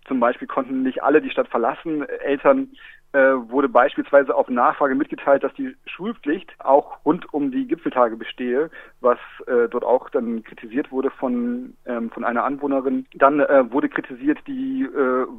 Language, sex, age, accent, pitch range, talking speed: German, male, 40-59, German, 130-220 Hz, 165 wpm